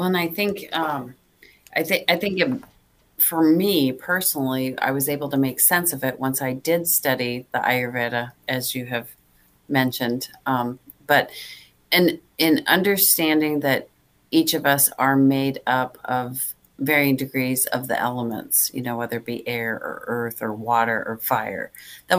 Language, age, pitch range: English, 40-59, 120-155 Hz